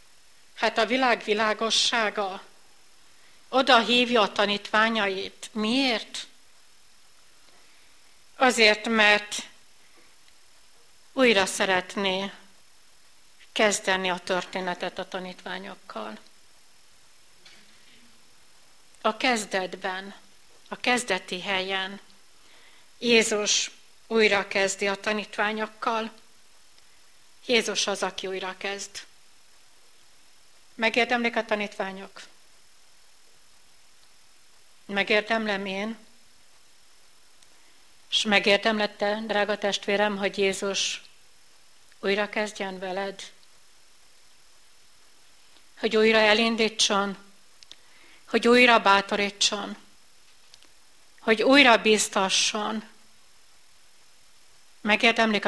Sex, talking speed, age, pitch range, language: female, 60 wpm, 60-79, 195-225 Hz, Hungarian